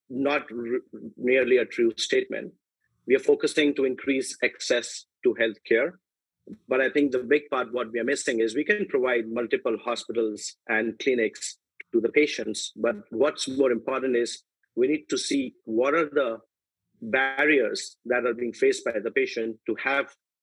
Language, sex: English, male